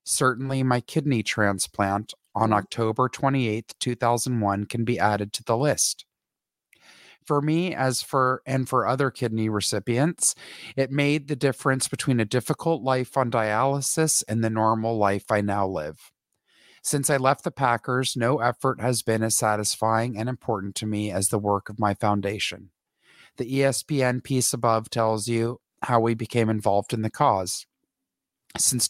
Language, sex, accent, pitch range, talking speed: English, male, American, 110-130 Hz, 155 wpm